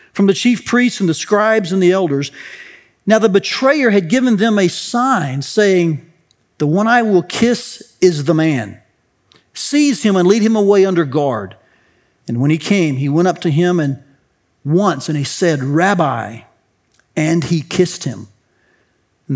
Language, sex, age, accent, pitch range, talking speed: English, male, 40-59, American, 155-225 Hz, 170 wpm